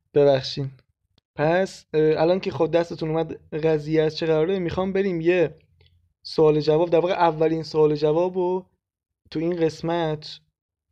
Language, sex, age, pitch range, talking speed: Persian, male, 20-39, 145-175 Hz, 135 wpm